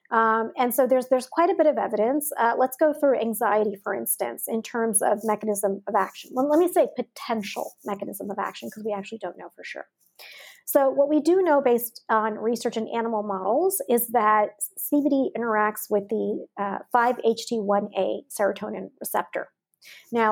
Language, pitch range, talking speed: English, 215-270 Hz, 175 wpm